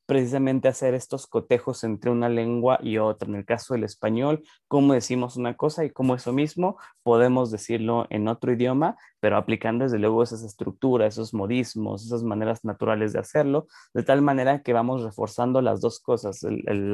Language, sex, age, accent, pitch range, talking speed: Spanish, male, 20-39, Mexican, 110-130 Hz, 180 wpm